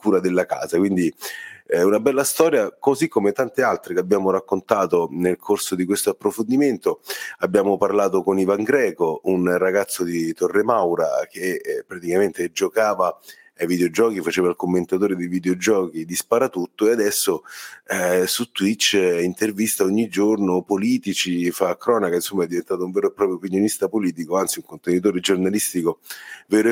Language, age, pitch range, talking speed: Italian, 30-49, 90-140 Hz, 155 wpm